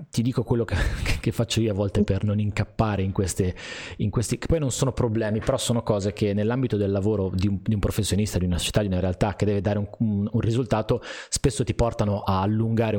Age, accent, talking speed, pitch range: 30-49, native, 230 wpm, 95-120 Hz